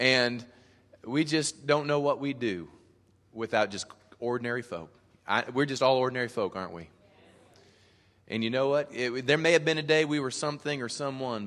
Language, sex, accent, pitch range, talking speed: English, male, American, 95-115 Hz, 190 wpm